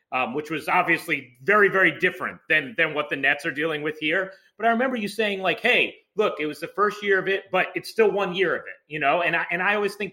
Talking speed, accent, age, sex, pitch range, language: 275 wpm, American, 30-49, male, 150-200 Hz, English